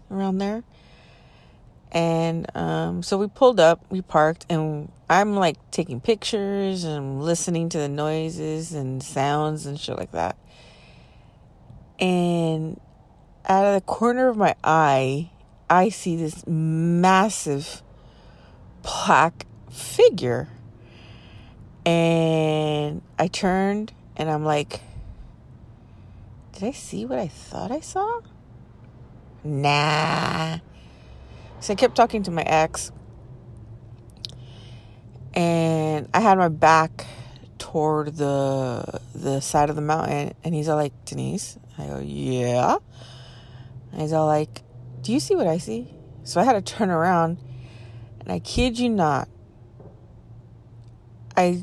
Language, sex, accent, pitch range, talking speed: English, female, American, 120-170 Hz, 120 wpm